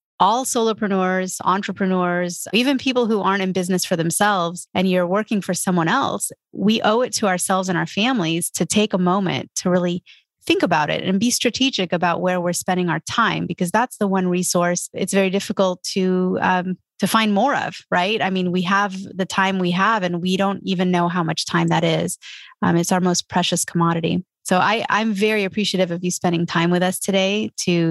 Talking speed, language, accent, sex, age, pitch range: 200 wpm, English, American, female, 30-49, 175-205 Hz